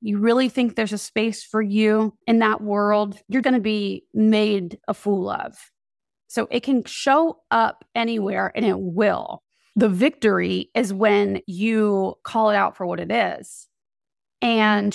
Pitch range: 210-260 Hz